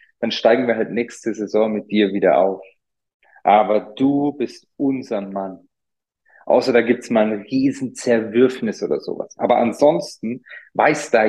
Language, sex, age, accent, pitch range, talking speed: German, male, 40-59, German, 115-150 Hz, 150 wpm